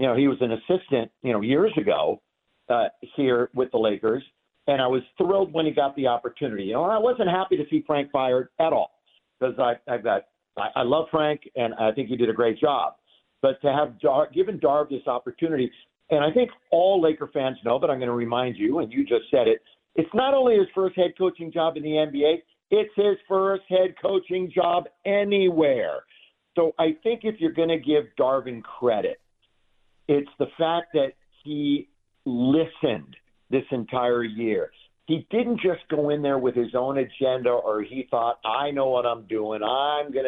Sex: male